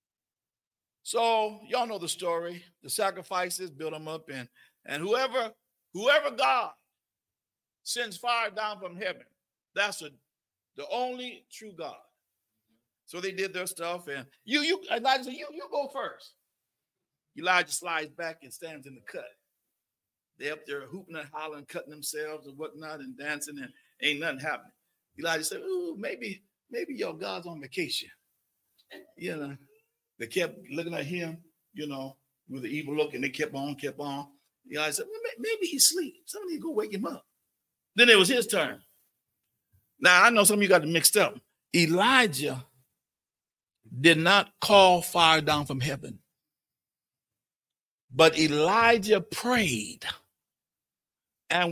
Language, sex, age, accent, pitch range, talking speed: English, male, 50-69, American, 150-245 Hz, 150 wpm